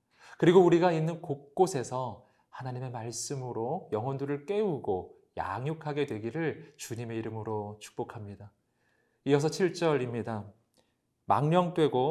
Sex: male